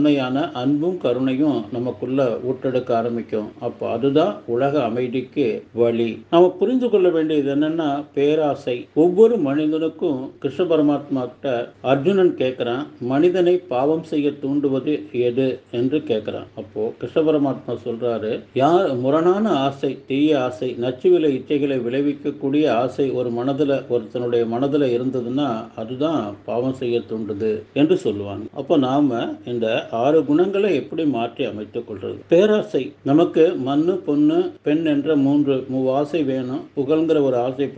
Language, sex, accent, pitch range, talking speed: Tamil, male, native, 125-155 Hz, 50 wpm